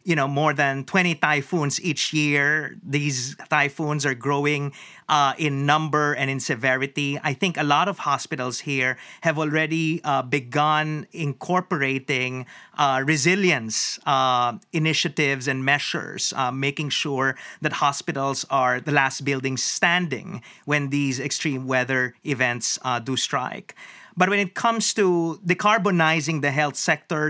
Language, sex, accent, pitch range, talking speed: English, male, Filipino, 140-165 Hz, 140 wpm